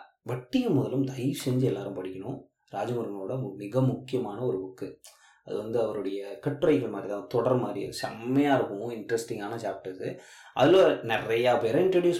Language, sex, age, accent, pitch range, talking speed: Tamil, male, 20-39, native, 120-165 Hz, 145 wpm